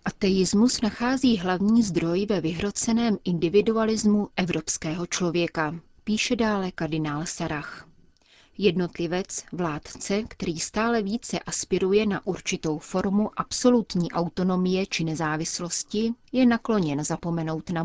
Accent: native